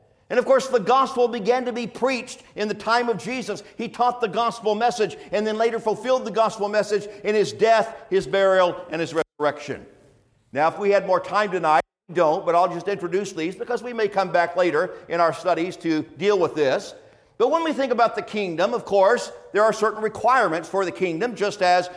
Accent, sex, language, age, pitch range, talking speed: American, male, English, 50-69, 195-250 Hz, 215 wpm